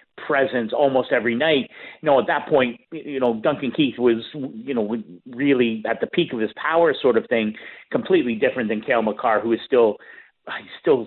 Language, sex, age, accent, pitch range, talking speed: English, male, 50-69, American, 110-135 Hz, 195 wpm